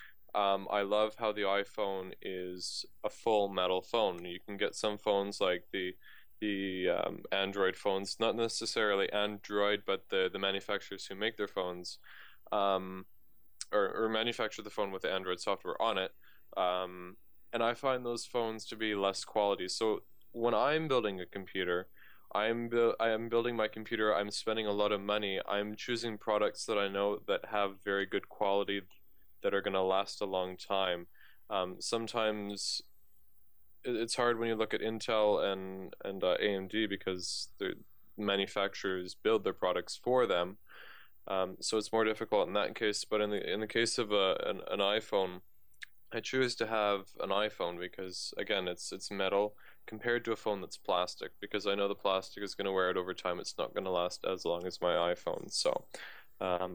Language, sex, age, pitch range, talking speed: English, male, 20-39, 95-110 Hz, 185 wpm